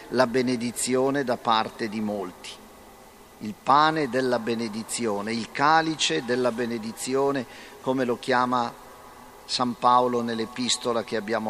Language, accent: Italian, native